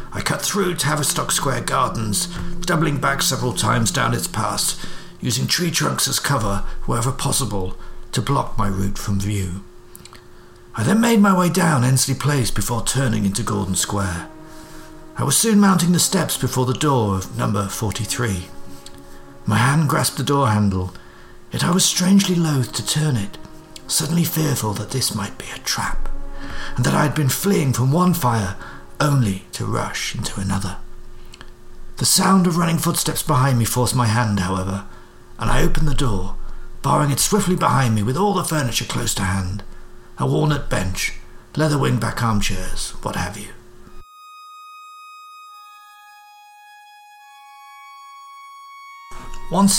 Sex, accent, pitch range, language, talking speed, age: male, British, 105-175 Hz, English, 150 wpm, 50-69